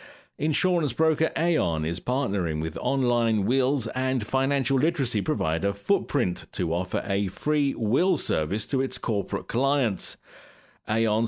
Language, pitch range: English, 105-145 Hz